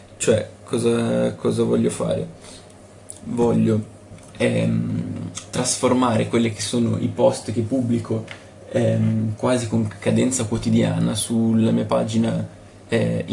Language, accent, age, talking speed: Italian, native, 20-39, 110 wpm